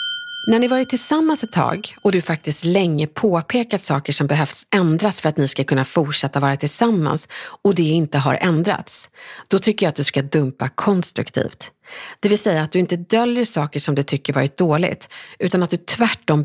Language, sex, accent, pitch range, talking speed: English, female, Swedish, 155-225 Hz, 195 wpm